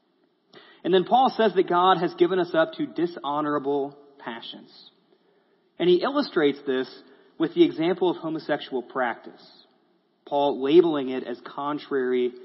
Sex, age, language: male, 30-49, English